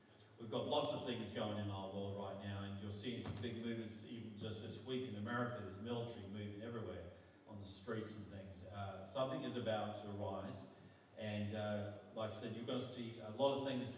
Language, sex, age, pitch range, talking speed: English, male, 40-59, 105-120 Hz, 225 wpm